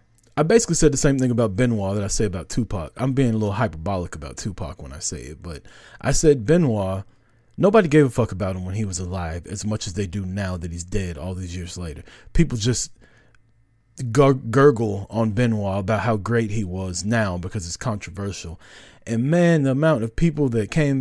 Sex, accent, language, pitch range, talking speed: male, American, English, 105-140 Hz, 210 wpm